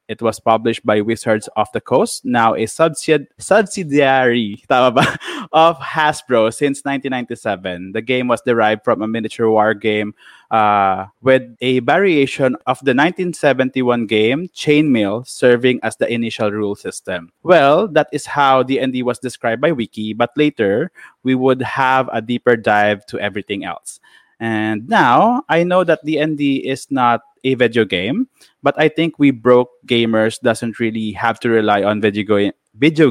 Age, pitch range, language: 20-39, 110-140 Hz, Filipino